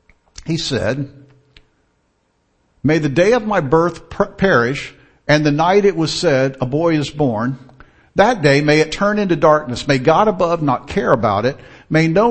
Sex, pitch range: male, 115-185 Hz